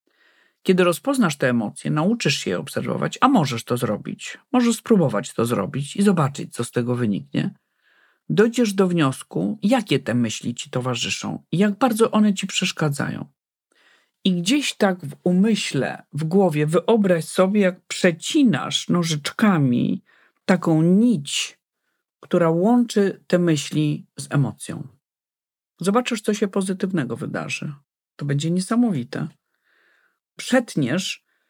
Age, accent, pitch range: 50-69, native, 145-195 Hz